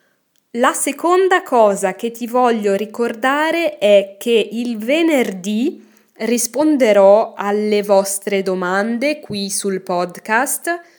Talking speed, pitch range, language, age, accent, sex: 100 wpm, 195-265 Hz, Italian, 20-39, native, female